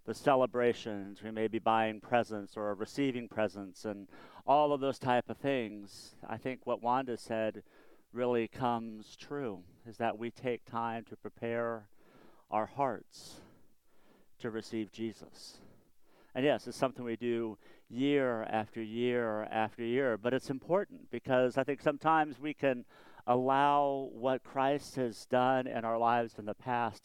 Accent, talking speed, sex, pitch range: American, 150 wpm, male, 105-130 Hz